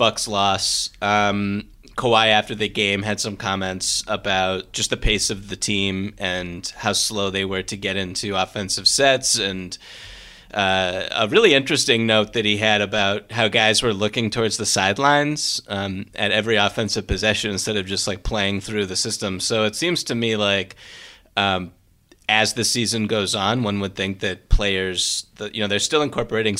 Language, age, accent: English, 30-49, American